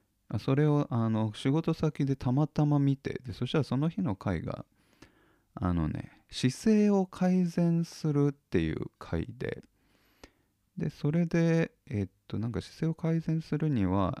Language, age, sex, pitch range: Japanese, 20-39, male, 95-145 Hz